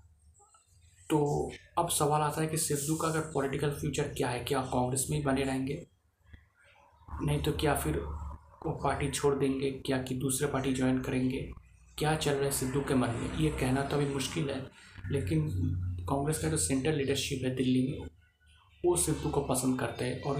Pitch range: 130-150 Hz